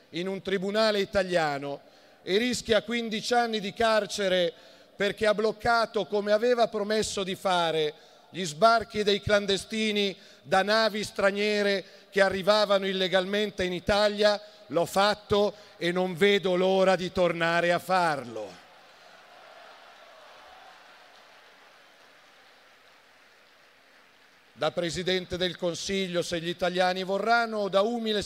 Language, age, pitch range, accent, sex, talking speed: Italian, 50-69, 180-205 Hz, native, male, 110 wpm